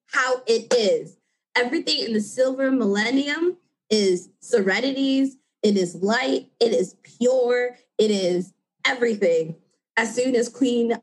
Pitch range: 185-245 Hz